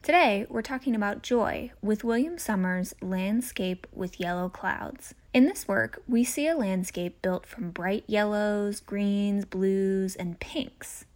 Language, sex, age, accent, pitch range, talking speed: English, female, 10-29, American, 190-240 Hz, 145 wpm